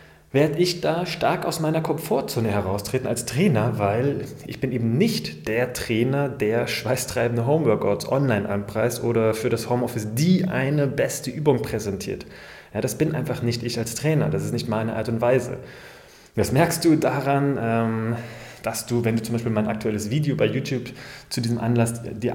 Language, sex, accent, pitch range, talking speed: German, male, German, 115-145 Hz, 175 wpm